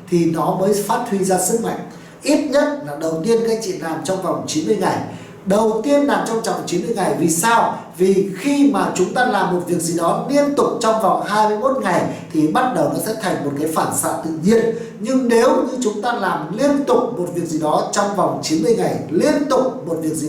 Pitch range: 160-225 Hz